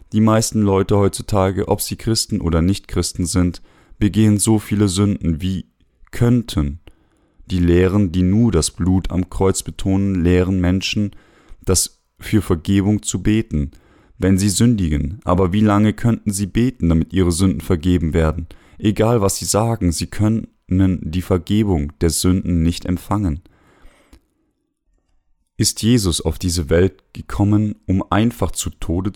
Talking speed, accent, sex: 140 wpm, German, male